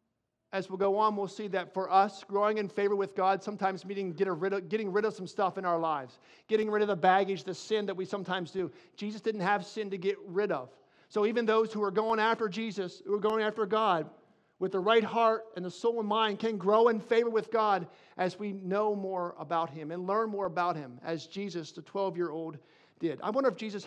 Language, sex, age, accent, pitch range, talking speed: English, male, 50-69, American, 185-220 Hz, 235 wpm